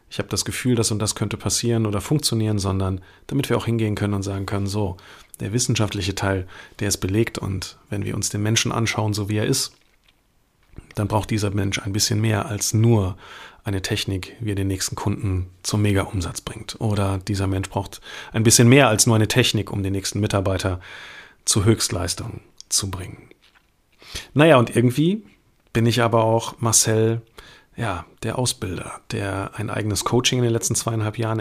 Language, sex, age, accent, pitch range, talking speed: German, male, 40-59, German, 100-115 Hz, 185 wpm